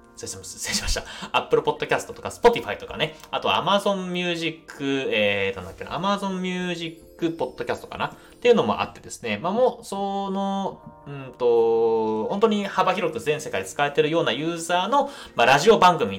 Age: 30-49